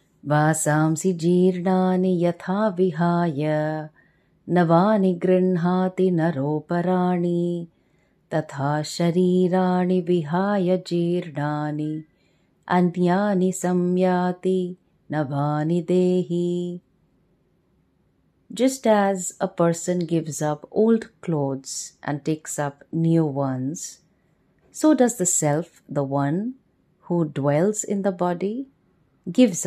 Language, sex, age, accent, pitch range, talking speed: English, female, 30-49, Indian, 150-185 Hz, 75 wpm